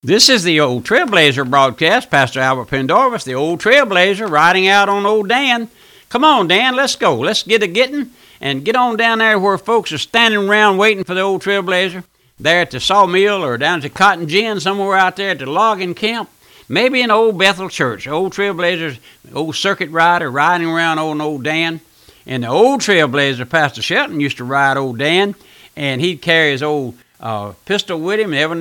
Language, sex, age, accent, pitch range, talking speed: English, male, 60-79, American, 145-200 Hz, 195 wpm